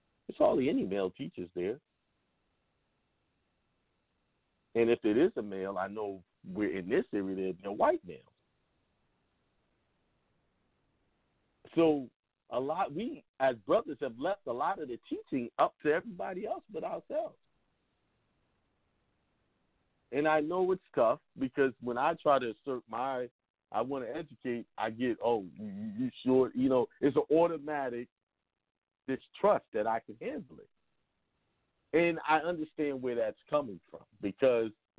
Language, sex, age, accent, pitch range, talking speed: English, male, 50-69, American, 105-150 Hz, 135 wpm